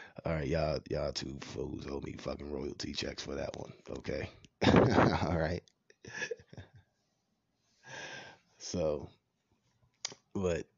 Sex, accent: male, American